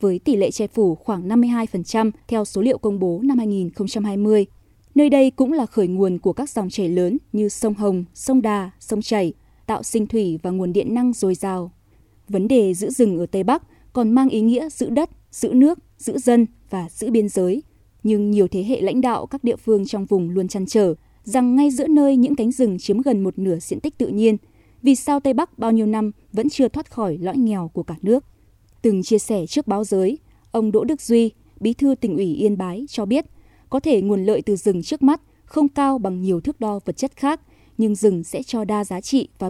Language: Vietnamese